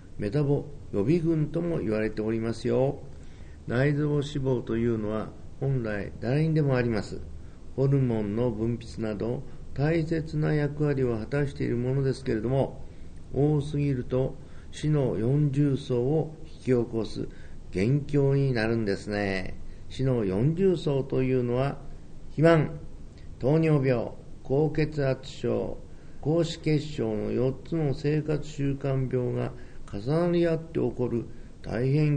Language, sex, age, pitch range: Japanese, male, 50-69, 105-140 Hz